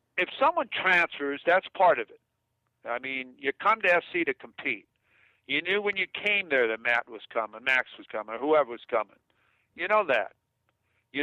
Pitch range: 120-195 Hz